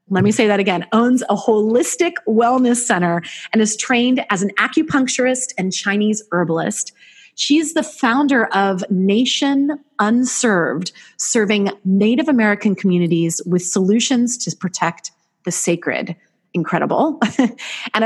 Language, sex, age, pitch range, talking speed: English, female, 30-49, 170-225 Hz, 125 wpm